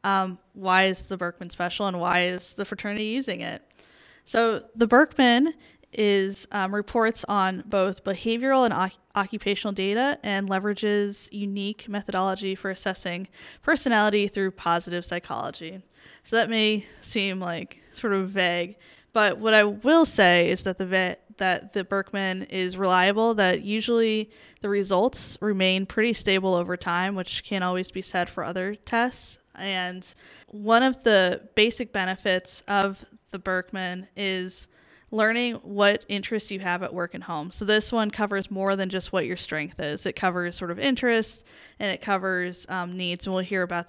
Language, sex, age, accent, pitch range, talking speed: English, female, 10-29, American, 180-215 Hz, 155 wpm